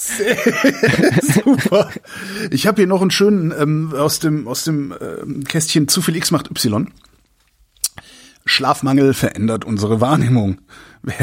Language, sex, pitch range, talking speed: German, male, 125-160 Hz, 130 wpm